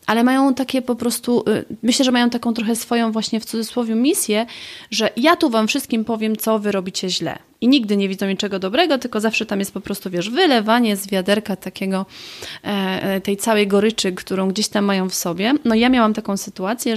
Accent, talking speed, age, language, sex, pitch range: native, 200 wpm, 30-49, Polish, female, 195-240 Hz